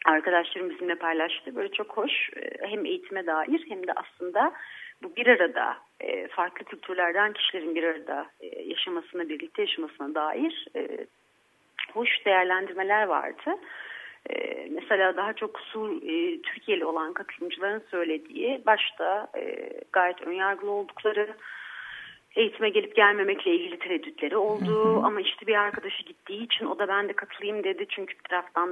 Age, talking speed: 40-59, 125 wpm